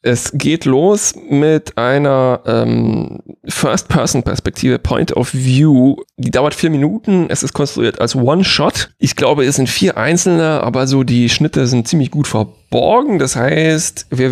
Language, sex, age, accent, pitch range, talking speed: German, male, 30-49, German, 130-165 Hz, 150 wpm